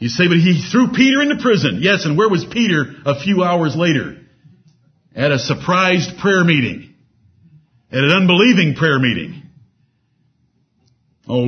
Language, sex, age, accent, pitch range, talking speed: English, male, 50-69, American, 135-175 Hz, 145 wpm